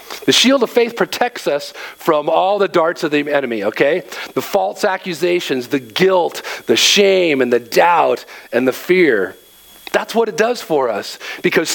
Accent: American